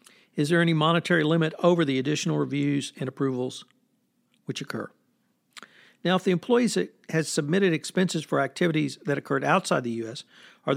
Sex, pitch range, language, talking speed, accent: male, 145-180 Hz, English, 155 wpm, American